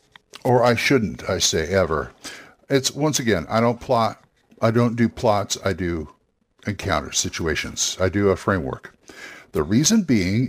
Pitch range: 105-130 Hz